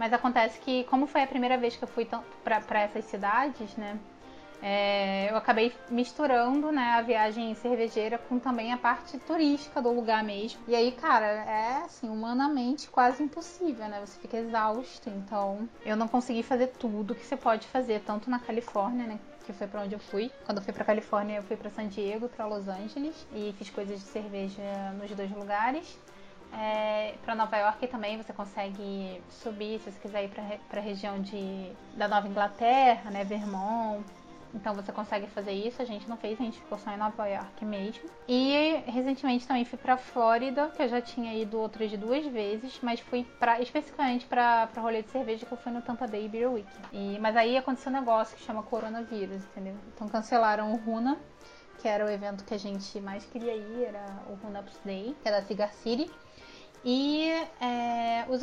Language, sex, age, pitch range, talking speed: Portuguese, female, 20-39, 210-255 Hz, 190 wpm